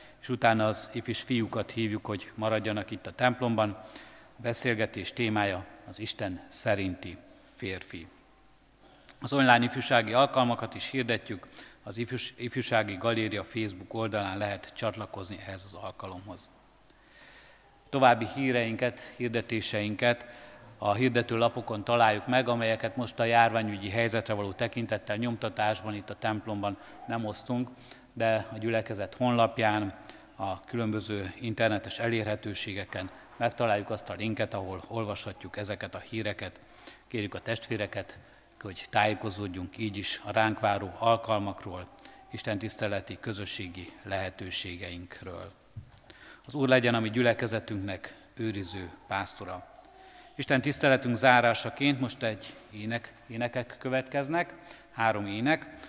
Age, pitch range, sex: 50-69, 105-120 Hz, male